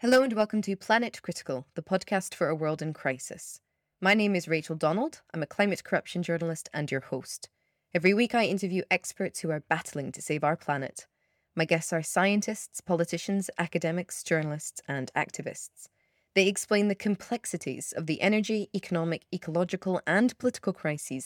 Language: English